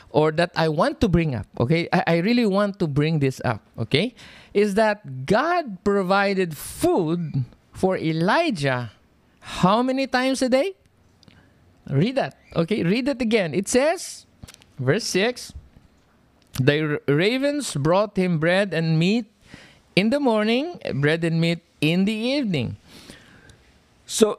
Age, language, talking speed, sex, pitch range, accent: 50-69, English, 140 wpm, male, 155-220 Hz, Filipino